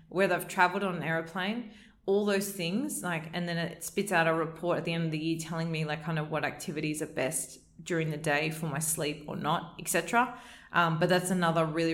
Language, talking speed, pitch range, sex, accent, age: English, 235 wpm, 155-180 Hz, female, Australian, 20-39